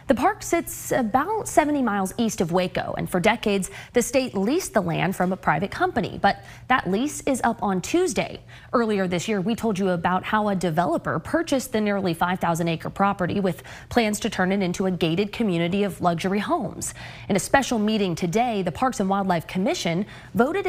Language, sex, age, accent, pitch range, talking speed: English, female, 20-39, American, 175-245 Hz, 190 wpm